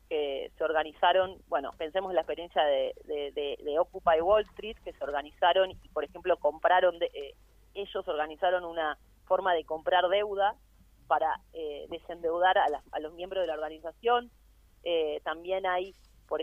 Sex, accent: female, Argentinian